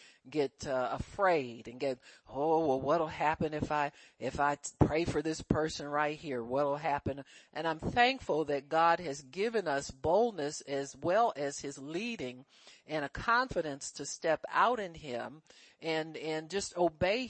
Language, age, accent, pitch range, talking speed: English, 50-69, American, 145-190 Hz, 165 wpm